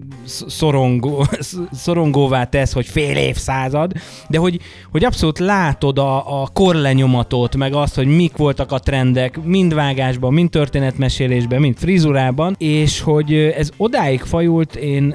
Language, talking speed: Hungarian, 130 wpm